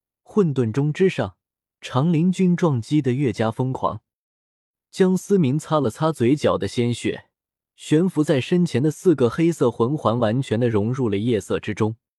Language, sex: Chinese, male